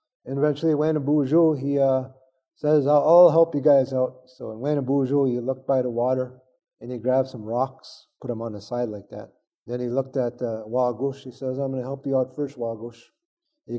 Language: English